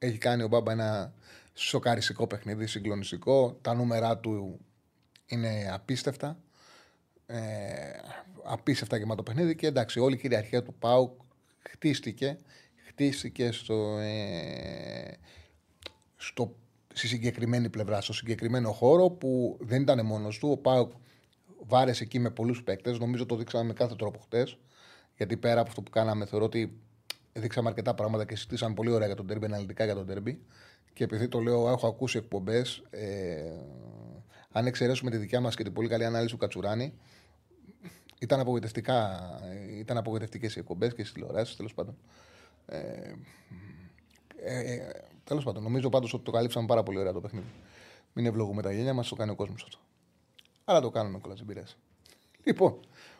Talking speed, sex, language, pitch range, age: 150 wpm, male, Greek, 105-125 Hz, 30-49